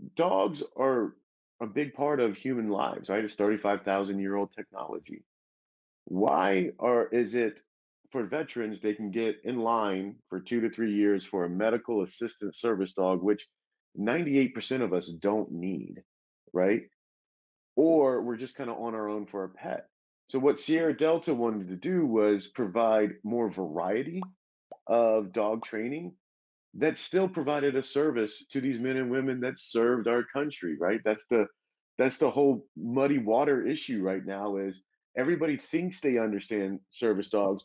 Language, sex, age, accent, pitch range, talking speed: English, male, 40-59, American, 100-130 Hz, 160 wpm